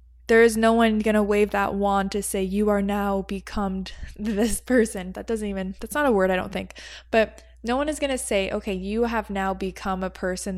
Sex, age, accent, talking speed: female, 20-39, American, 235 wpm